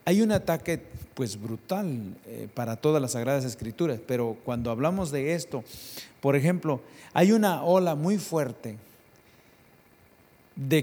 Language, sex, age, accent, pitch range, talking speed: English, male, 50-69, Mexican, 115-170 Hz, 125 wpm